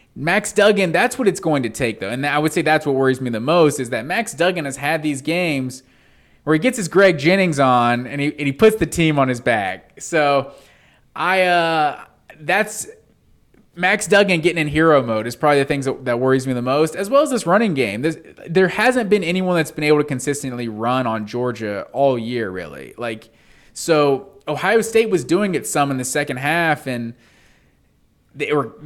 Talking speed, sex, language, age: 210 wpm, male, English, 20-39